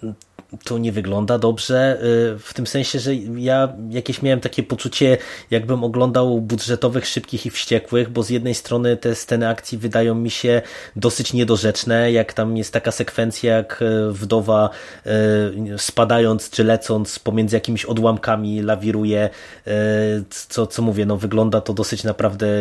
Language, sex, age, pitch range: Polish, male, 20-39, 110-135 Hz